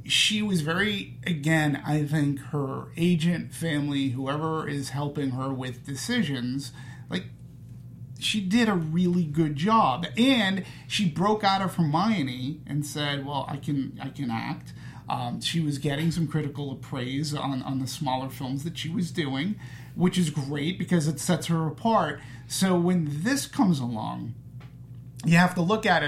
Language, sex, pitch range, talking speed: English, male, 130-165 Hz, 165 wpm